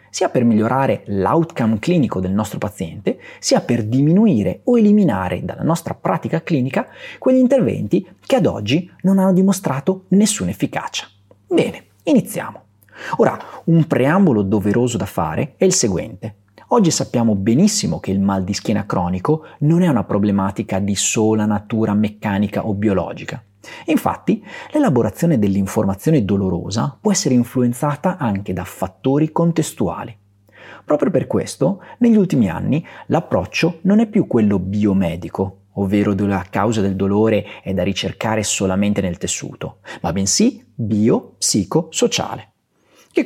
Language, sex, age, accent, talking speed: Italian, male, 30-49, native, 135 wpm